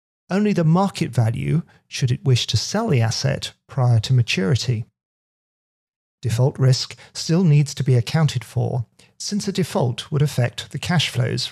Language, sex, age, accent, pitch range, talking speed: English, male, 40-59, British, 120-150 Hz, 155 wpm